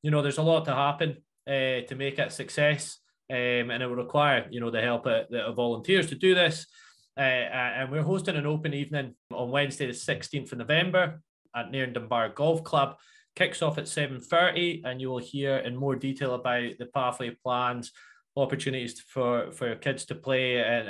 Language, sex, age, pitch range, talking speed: English, male, 20-39, 120-145 Hz, 200 wpm